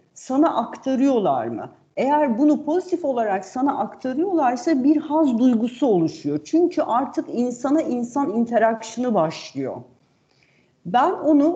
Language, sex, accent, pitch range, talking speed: Turkish, female, native, 215-310 Hz, 110 wpm